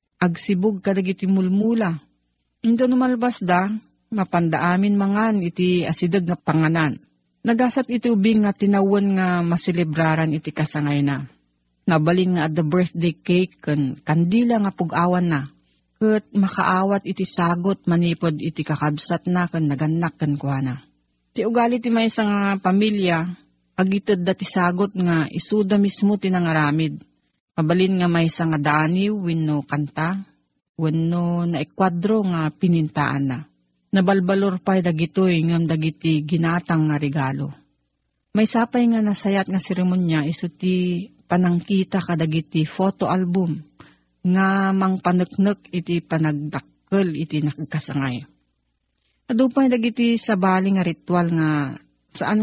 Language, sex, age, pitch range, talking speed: Filipino, female, 40-59, 155-195 Hz, 120 wpm